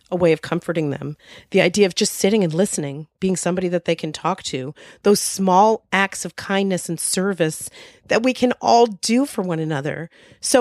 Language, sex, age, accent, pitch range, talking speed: English, female, 40-59, American, 170-210 Hz, 200 wpm